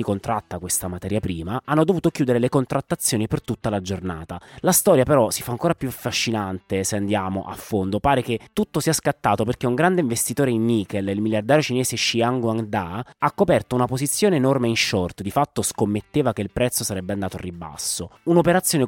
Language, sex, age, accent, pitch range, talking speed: Italian, male, 20-39, native, 100-140 Hz, 190 wpm